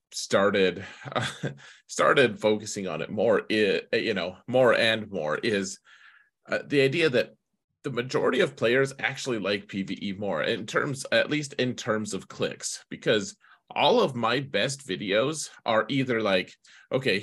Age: 30-49